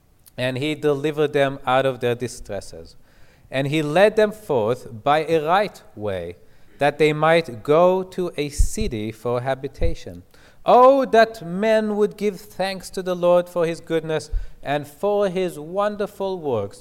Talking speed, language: 155 wpm, English